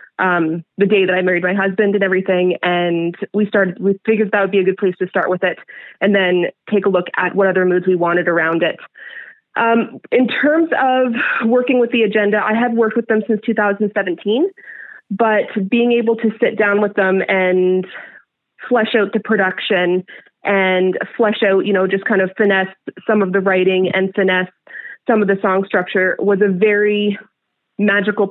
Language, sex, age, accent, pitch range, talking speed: English, female, 20-39, American, 185-215 Hz, 190 wpm